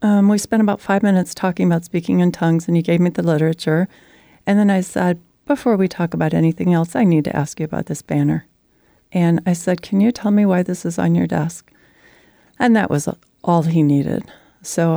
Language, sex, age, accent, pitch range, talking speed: English, female, 40-59, American, 155-180 Hz, 220 wpm